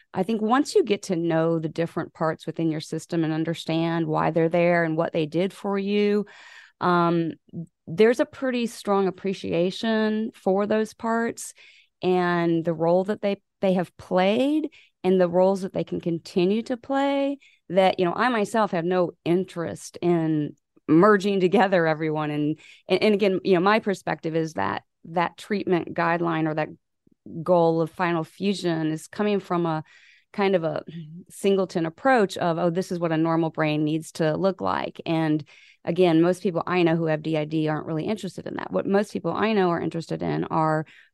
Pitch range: 165-200 Hz